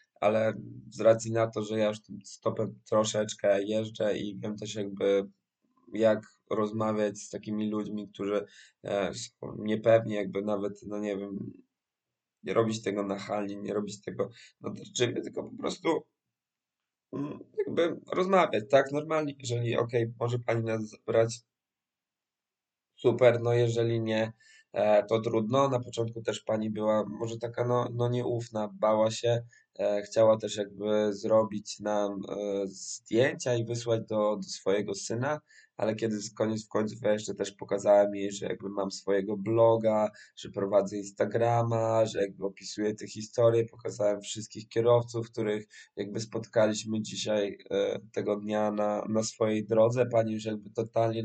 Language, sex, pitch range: Polish, male, 105-120 Hz